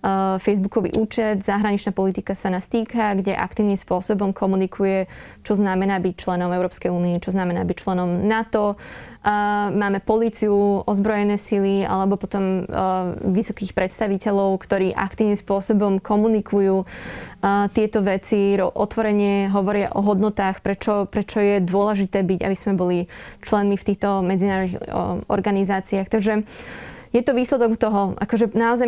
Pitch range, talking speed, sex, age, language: 195-225 Hz, 125 wpm, female, 20-39, Slovak